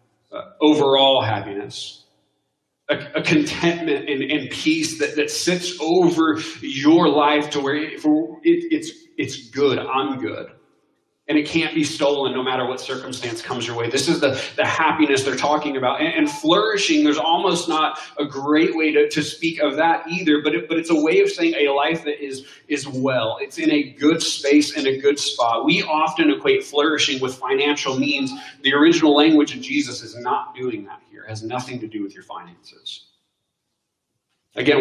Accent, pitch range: American, 140-185 Hz